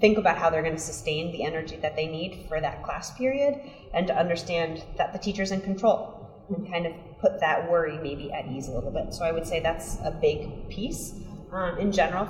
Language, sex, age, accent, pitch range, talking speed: English, female, 20-39, American, 160-185 Hz, 230 wpm